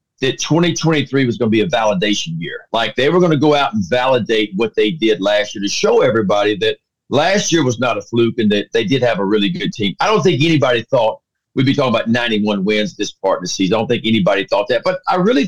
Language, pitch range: English, 115-160 Hz